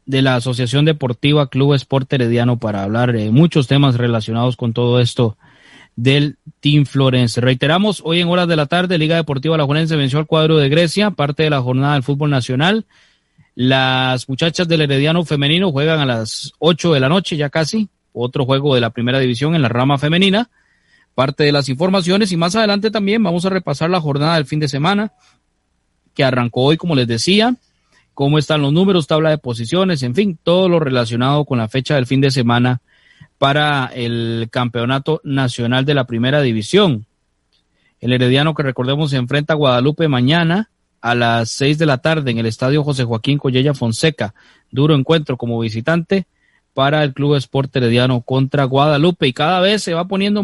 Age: 30-49